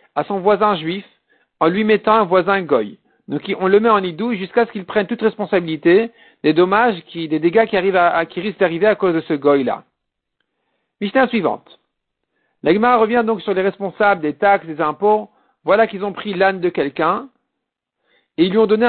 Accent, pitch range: French, 170-220 Hz